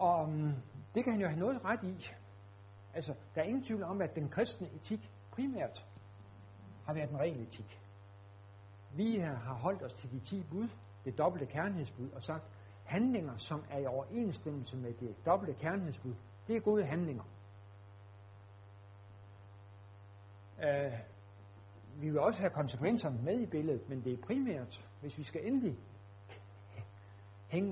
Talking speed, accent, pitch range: 150 wpm, native, 100-155 Hz